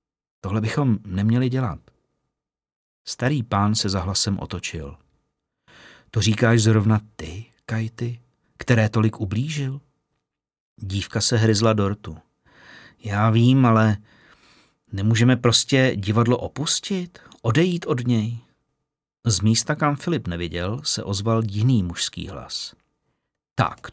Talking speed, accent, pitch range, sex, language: 110 wpm, native, 110-135 Hz, male, Czech